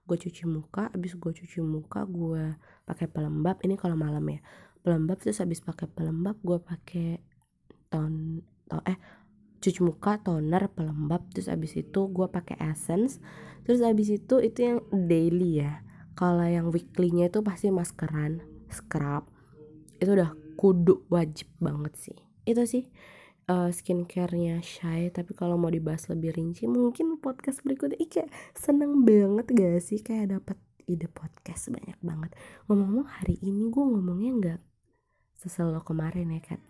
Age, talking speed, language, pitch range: 20-39, 140 wpm, Indonesian, 160-205 Hz